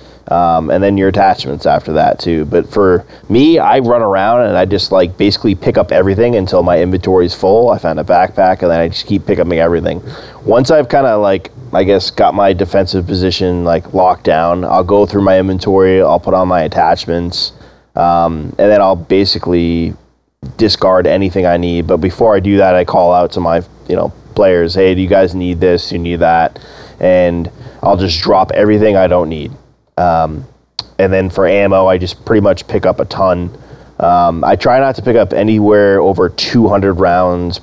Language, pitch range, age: English, 85-100 Hz, 20-39